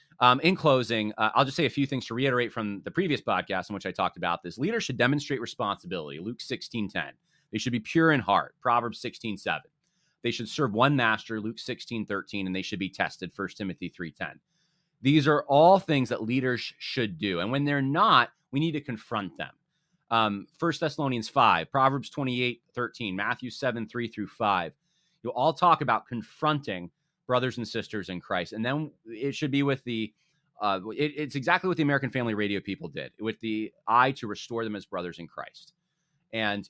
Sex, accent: male, American